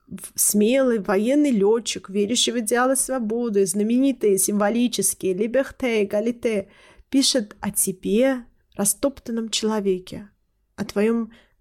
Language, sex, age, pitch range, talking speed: Russian, female, 20-39, 195-250 Hz, 100 wpm